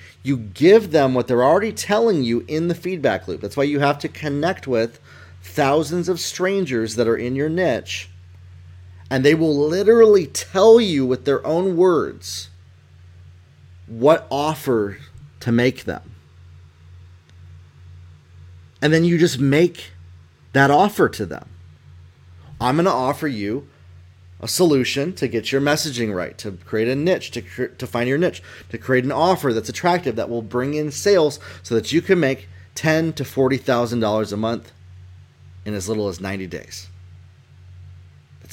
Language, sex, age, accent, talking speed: English, male, 30-49, American, 155 wpm